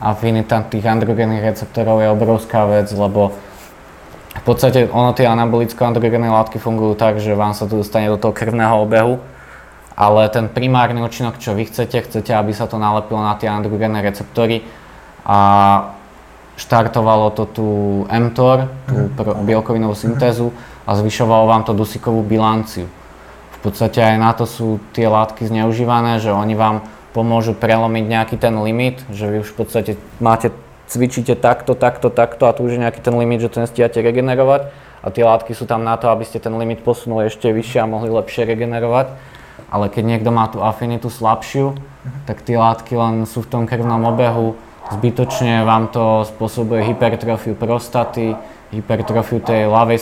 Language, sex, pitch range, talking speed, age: Slovak, male, 110-120 Hz, 165 wpm, 20-39